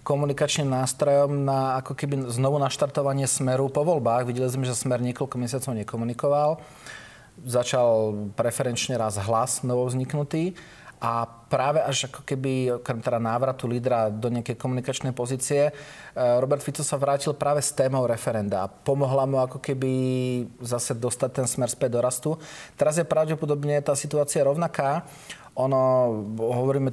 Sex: male